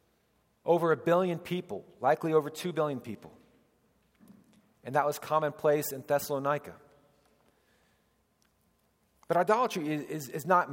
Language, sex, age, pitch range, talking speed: English, male, 40-59, 120-150 Hz, 115 wpm